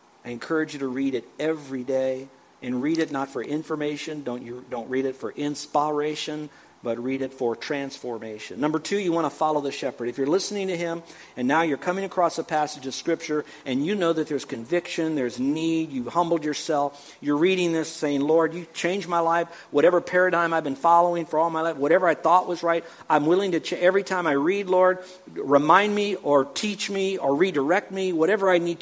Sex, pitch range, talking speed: male, 135-175 Hz, 210 wpm